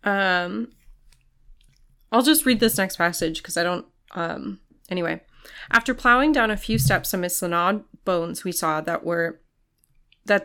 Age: 30-49